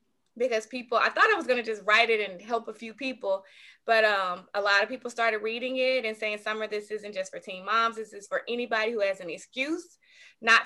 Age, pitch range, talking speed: 20-39, 215-260 Hz, 240 wpm